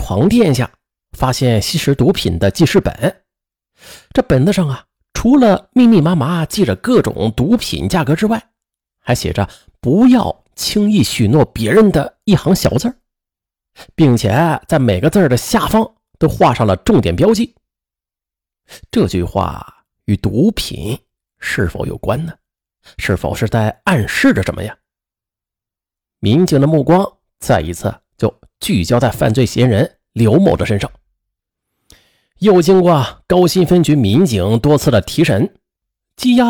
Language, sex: Chinese, male